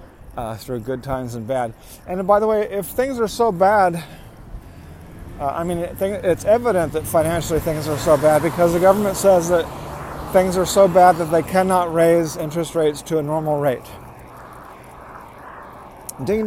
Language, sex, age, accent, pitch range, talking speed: English, male, 40-59, American, 135-185 Hz, 170 wpm